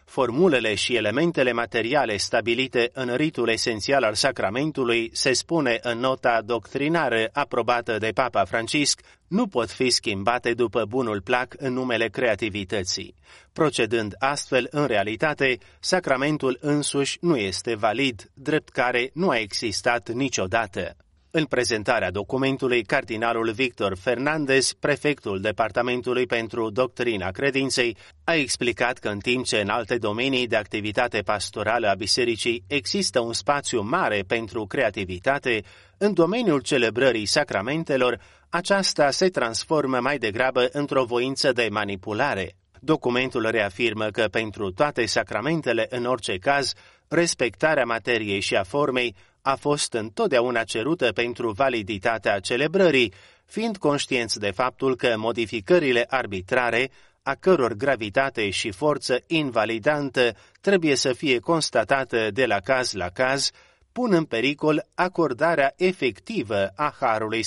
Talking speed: 125 wpm